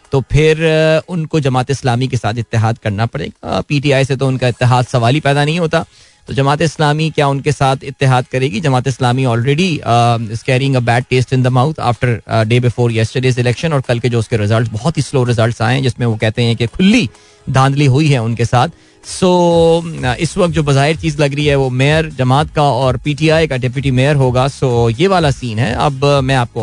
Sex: male